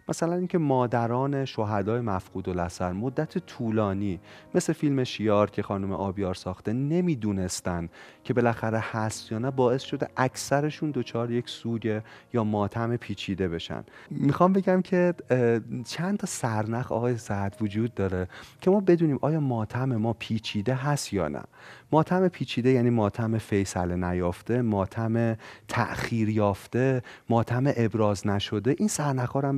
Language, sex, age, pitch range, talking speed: Persian, male, 30-49, 105-150 Hz, 135 wpm